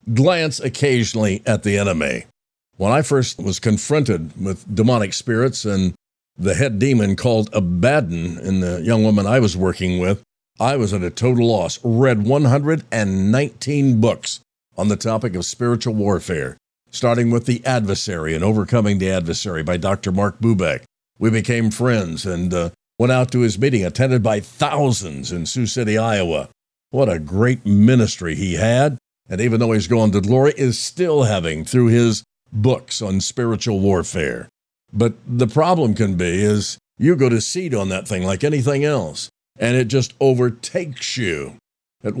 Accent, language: American, English